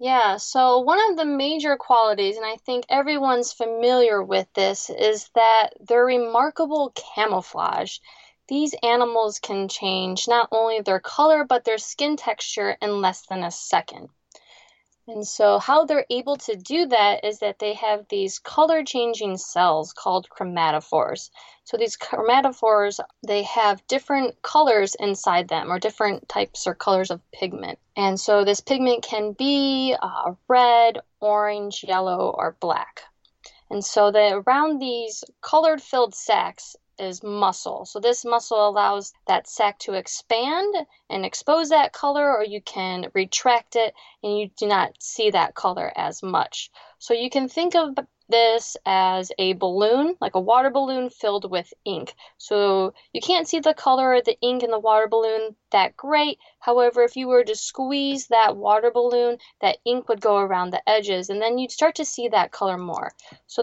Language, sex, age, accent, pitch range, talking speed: English, female, 20-39, American, 205-260 Hz, 165 wpm